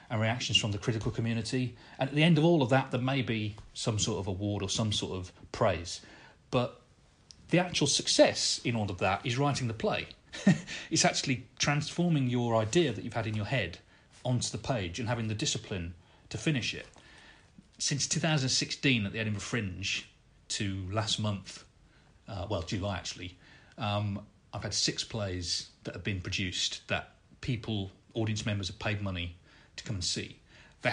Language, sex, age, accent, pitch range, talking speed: English, male, 40-59, British, 100-125 Hz, 180 wpm